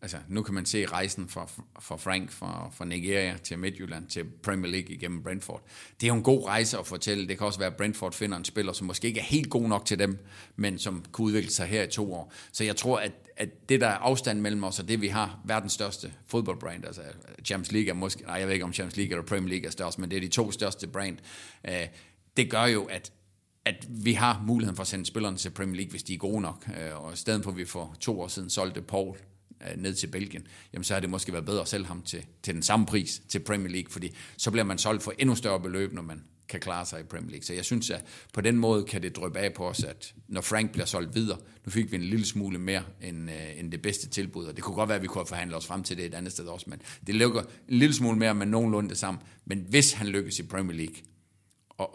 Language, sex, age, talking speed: Danish, male, 40-59, 265 wpm